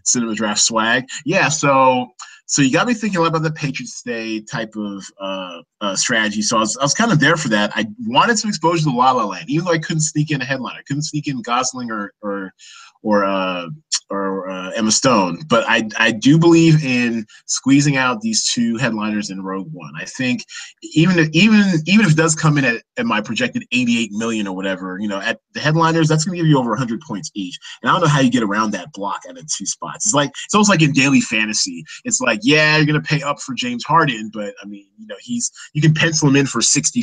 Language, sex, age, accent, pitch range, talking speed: English, male, 20-39, American, 115-170 Hz, 255 wpm